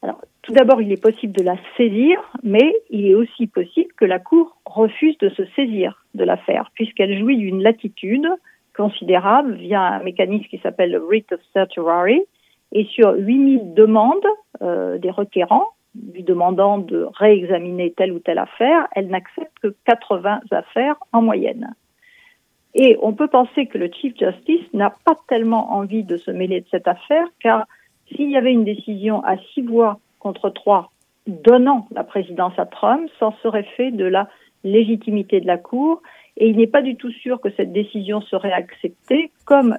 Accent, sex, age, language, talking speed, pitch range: French, female, 50-69, French, 170 wpm, 195-265 Hz